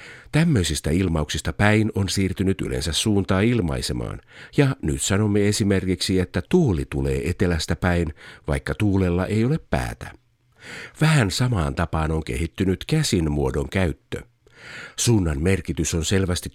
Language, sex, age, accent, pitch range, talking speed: Finnish, male, 50-69, native, 85-115 Hz, 120 wpm